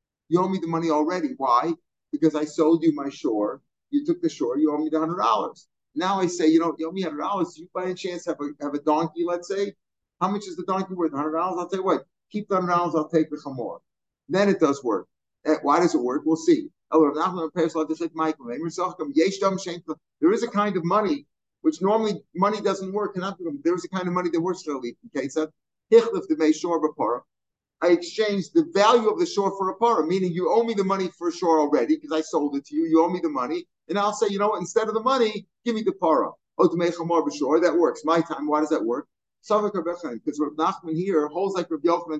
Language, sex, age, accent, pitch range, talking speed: English, male, 50-69, American, 160-195 Hz, 225 wpm